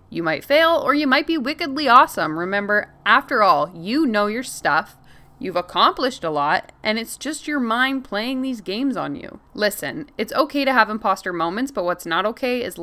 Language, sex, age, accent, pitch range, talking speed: English, female, 20-39, American, 180-250 Hz, 195 wpm